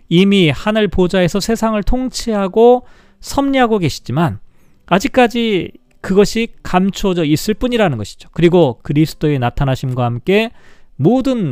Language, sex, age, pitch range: Korean, male, 40-59, 145-210 Hz